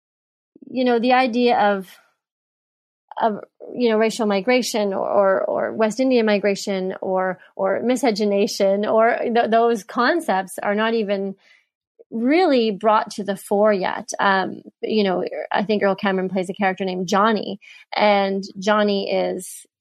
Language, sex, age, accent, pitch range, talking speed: English, female, 30-49, American, 195-230 Hz, 140 wpm